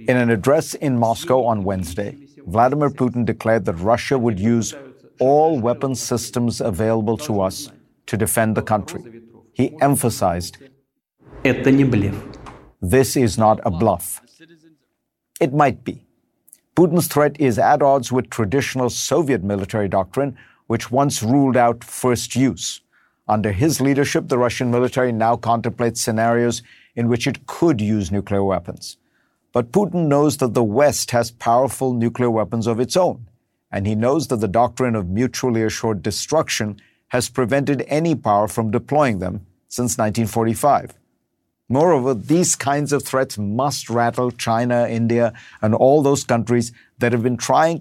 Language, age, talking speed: English, 50-69, 145 wpm